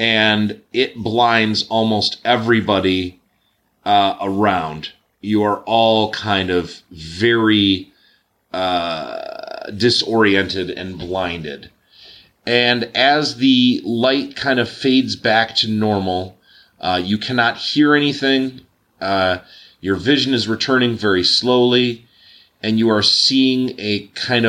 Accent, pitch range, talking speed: American, 100-125 Hz, 110 wpm